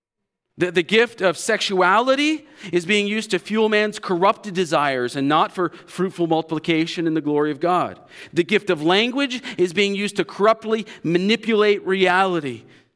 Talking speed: 155 wpm